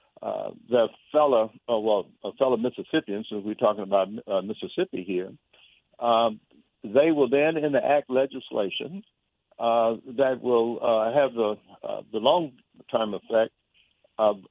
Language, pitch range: English, 110-130 Hz